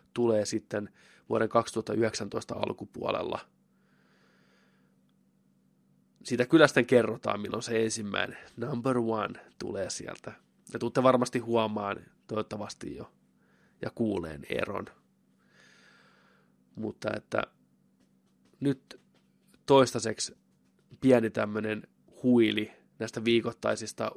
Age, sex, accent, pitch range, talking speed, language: 20-39, male, native, 105-125 Hz, 80 wpm, Finnish